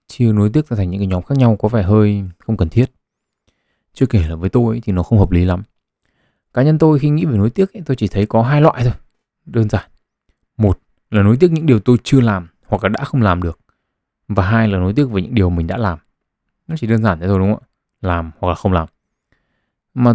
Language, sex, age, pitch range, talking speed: Vietnamese, male, 20-39, 95-120 Hz, 255 wpm